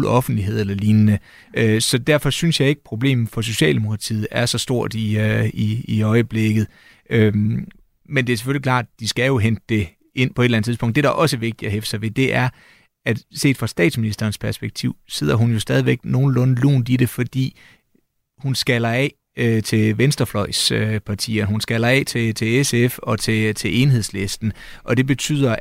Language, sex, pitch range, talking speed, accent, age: Danish, male, 110-125 Hz, 180 wpm, native, 30-49